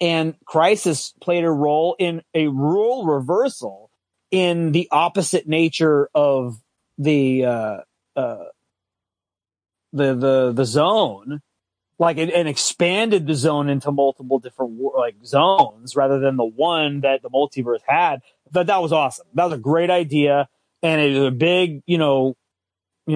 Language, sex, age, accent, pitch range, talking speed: English, male, 30-49, American, 125-165 Hz, 150 wpm